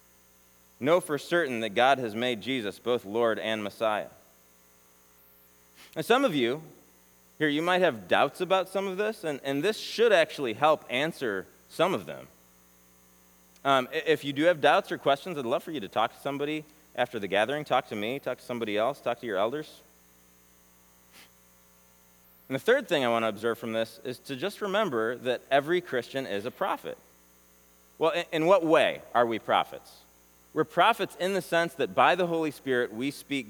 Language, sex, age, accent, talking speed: English, male, 30-49, American, 190 wpm